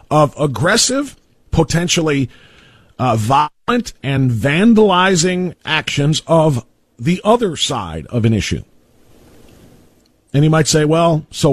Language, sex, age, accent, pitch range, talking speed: English, male, 50-69, American, 120-165 Hz, 110 wpm